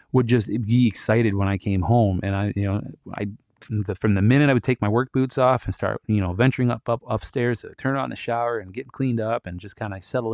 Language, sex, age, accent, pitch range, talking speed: English, male, 30-49, American, 95-120 Hz, 275 wpm